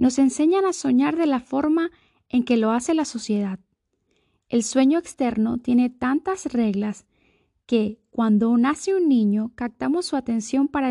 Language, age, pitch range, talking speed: Spanish, 10-29, 220-275 Hz, 155 wpm